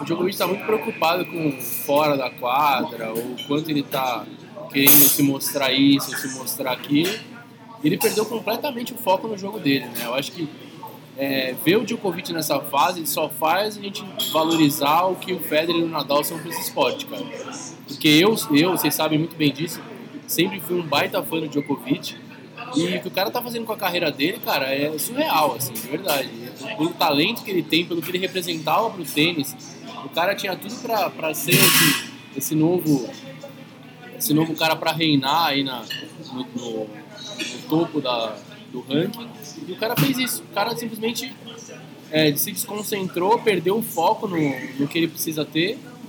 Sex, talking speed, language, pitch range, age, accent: male, 185 wpm, Portuguese, 145-215 Hz, 20-39, Brazilian